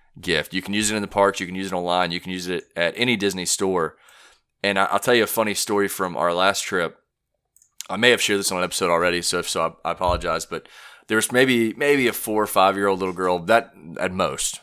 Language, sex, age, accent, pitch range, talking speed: English, male, 30-49, American, 95-110 Hz, 245 wpm